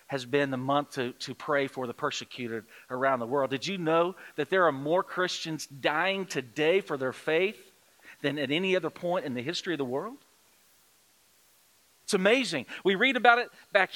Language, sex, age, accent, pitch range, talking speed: English, male, 40-59, American, 170-230 Hz, 190 wpm